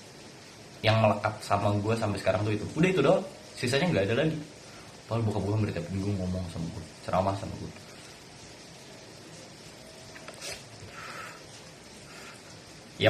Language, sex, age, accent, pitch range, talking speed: Indonesian, male, 20-39, native, 85-110 Hz, 120 wpm